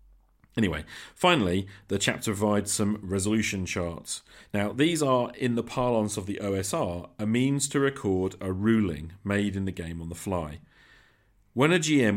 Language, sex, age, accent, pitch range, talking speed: English, male, 40-59, British, 95-115 Hz, 165 wpm